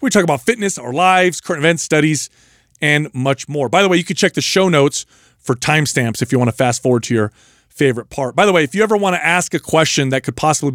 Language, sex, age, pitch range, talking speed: English, male, 40-59, 135-180 Hz, 260 wpm